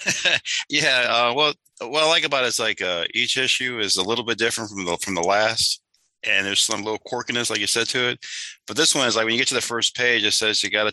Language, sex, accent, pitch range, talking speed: English, male, American, 95-120 Hz, 270 wpm